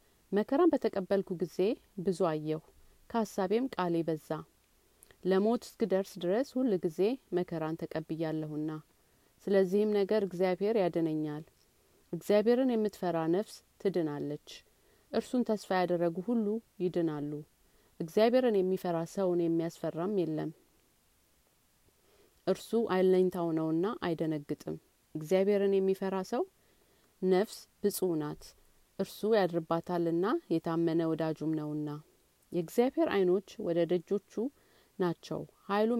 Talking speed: 90 wpm